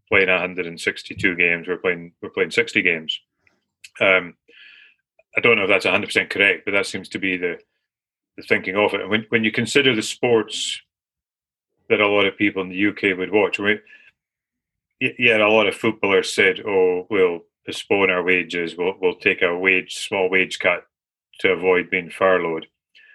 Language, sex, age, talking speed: English, male, 30-49, 180 wpm